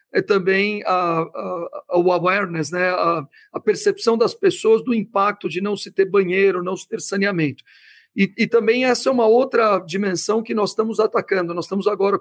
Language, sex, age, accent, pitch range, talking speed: Portuguese, male, 50-69, Brazilian, 190-230 Hz, 175 wpm